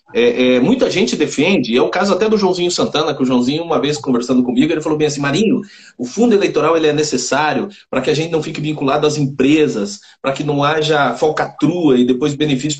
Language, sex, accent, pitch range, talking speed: Portuguese, male, Brazilian, 135-225 Hz, 220 wpm